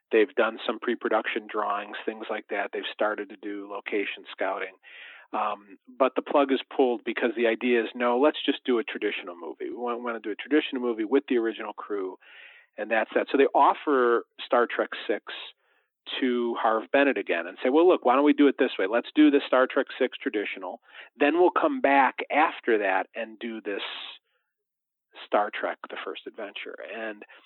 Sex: male